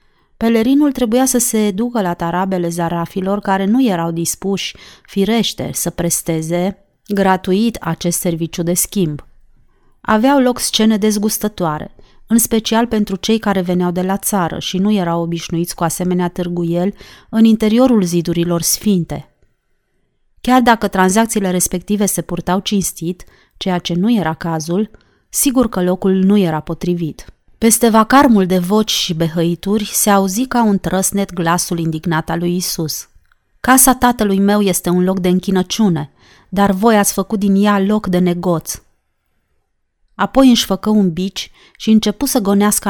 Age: 30-49